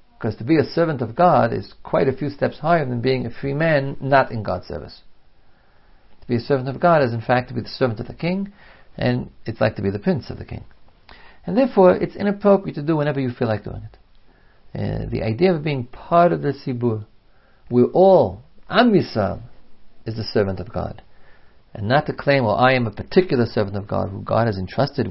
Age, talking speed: 50-69, 220 wpm